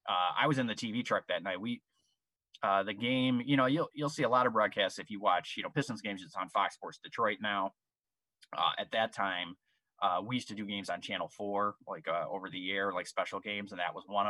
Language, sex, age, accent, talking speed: English, male, 20-39, American, 250 wpm